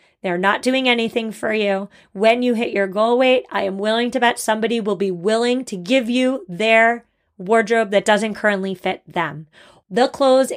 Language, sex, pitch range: English, female, 205-255 Hz